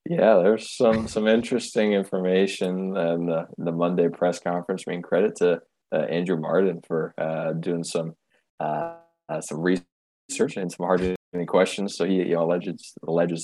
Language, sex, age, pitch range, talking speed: English, male, 20-39, 80-90 Hz, 180 wpm